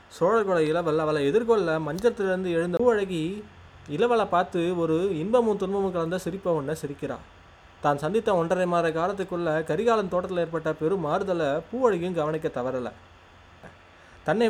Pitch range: 155-200 Hz